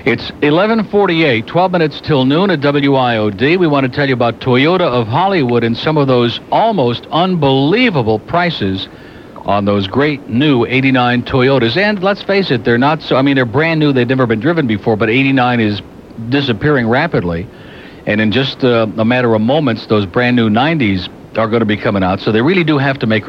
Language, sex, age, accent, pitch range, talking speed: English, male, 60-79, American, 110-145 Hz, 200 wpm